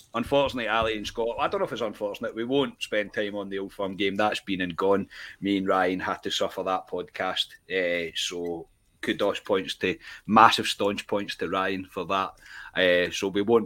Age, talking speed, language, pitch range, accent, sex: 30-49, 205 wpm, English, 100-120 Hz, British, male